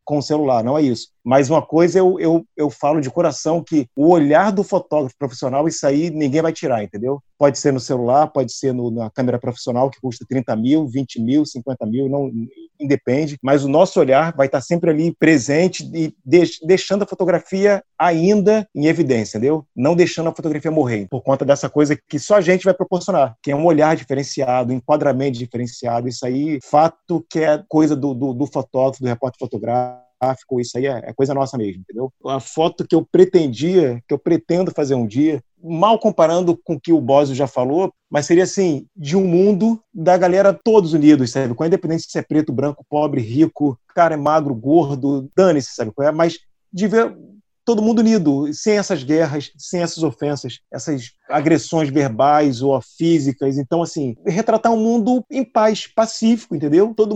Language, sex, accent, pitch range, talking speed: Portuguese, male, Brazilian, 135-175 Hz, 185 wpm